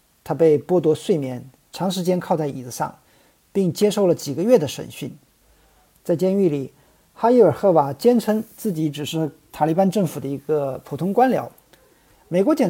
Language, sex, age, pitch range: Chinese, male, 50-69, 150-210 Hz